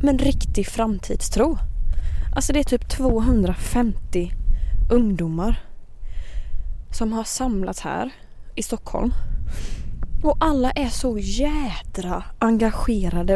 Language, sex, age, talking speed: Swedish, female, 20-39, 100 wpm